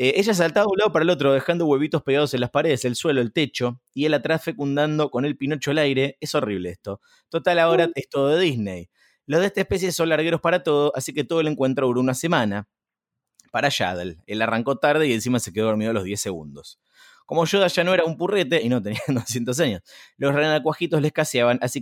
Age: 20-39